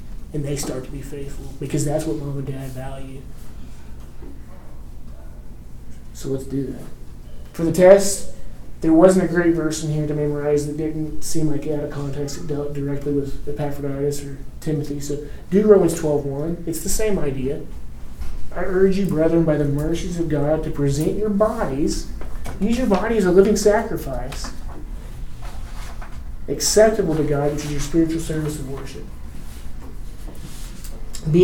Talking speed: 160 wpm